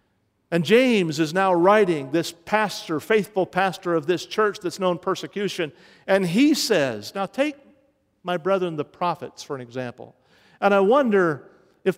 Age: 50-69